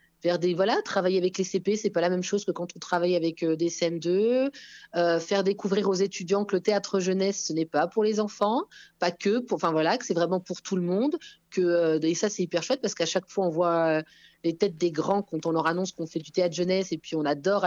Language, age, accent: French, 30-49, French